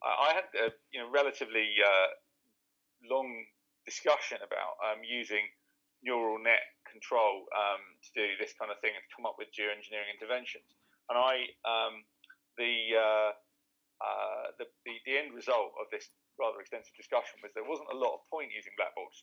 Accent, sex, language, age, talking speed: British, male, English, 40-59, 170 wpm